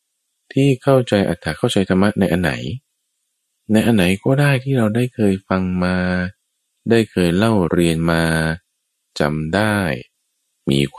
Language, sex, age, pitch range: Thai, male, 20-39, 75-110 Hz